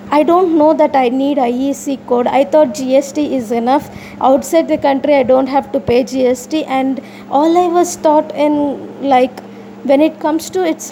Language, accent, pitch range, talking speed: English, Indian, 255-305 Hz, 185 wpm